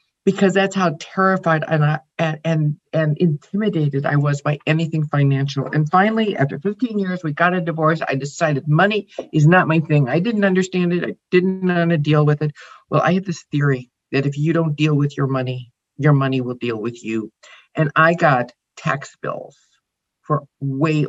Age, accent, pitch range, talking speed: 50-69, American, 145-180 Hz, 195 wpm